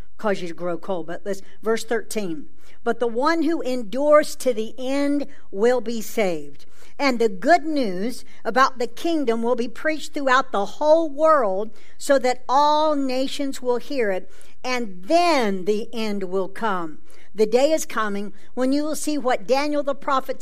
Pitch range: 215-270 Hz